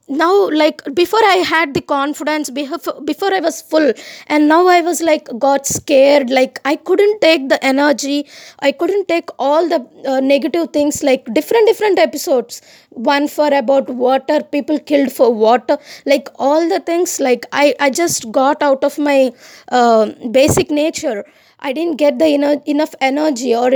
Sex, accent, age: female, Indian, 20-39